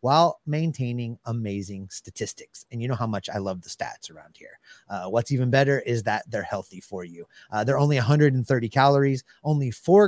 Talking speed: 190 wpm